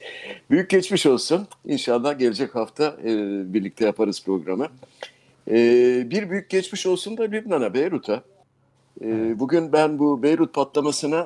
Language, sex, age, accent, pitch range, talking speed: Turkish, male, 60-79, native, 105-145 Hz, 110 wpm